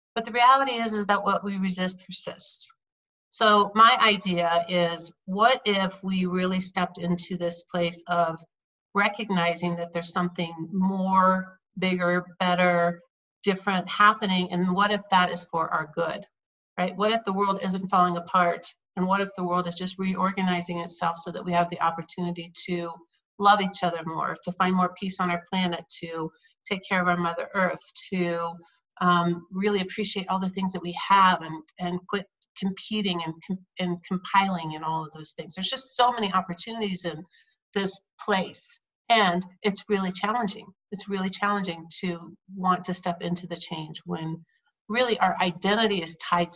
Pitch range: 175-200 Hz